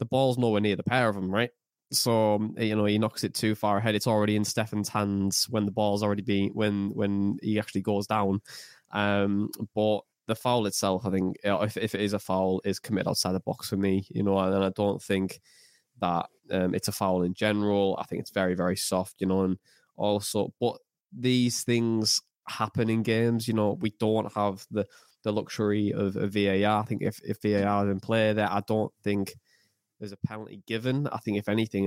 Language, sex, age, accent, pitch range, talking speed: English, male, 10-29, British, 100-115 Hz, 215 wpm